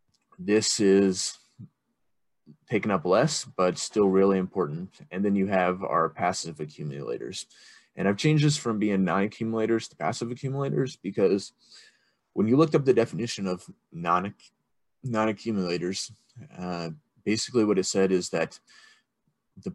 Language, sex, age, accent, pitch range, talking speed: English, male, 20-39, American, 95-120 Hz, 130 wpm